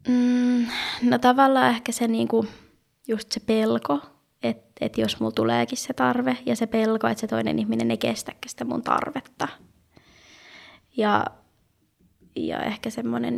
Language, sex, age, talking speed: Finnish, female, 20-39, 150 wpm